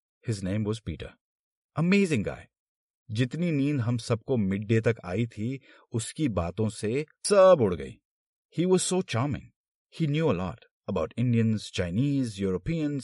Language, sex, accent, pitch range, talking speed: Hindi, male, native, 90-145 Hz, 145 wpm